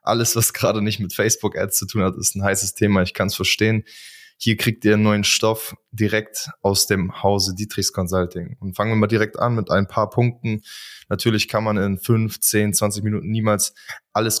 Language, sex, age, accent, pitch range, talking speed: German, male, 20-39, German, 95-110 Hz, 205 wpm